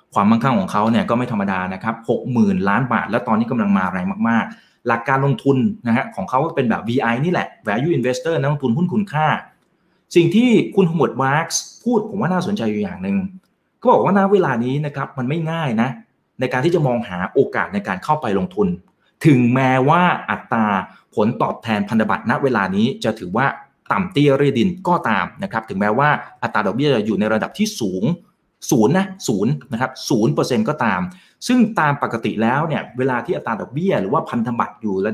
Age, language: 20-39, Thai